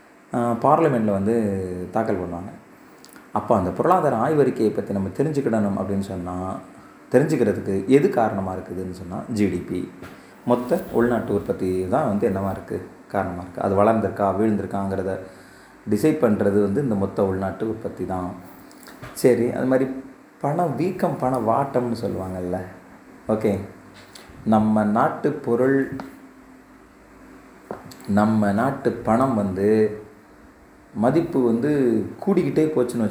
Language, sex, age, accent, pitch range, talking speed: Tamil, male, 30-49, native, 95-120 Hz, 105 wpm